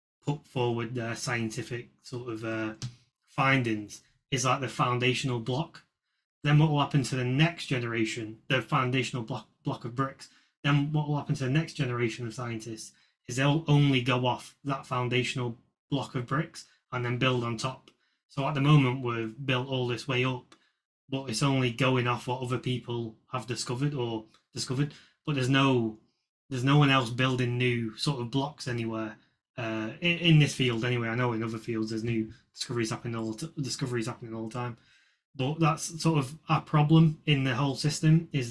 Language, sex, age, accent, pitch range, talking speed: English, male, 20-39, British, 120-140 Hz, 180 wpm